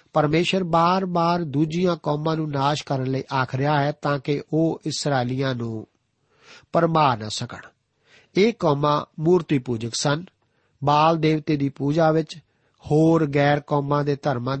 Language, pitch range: Punjabi, 130-165 Hz